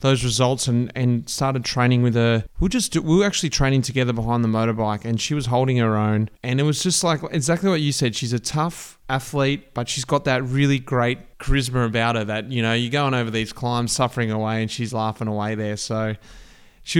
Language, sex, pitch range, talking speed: English, male, 120-150 Hz, 225 wpm